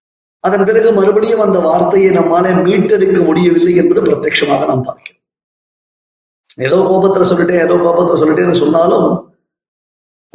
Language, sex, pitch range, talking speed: Tamil, male, 150-195 Hz, 110 wpm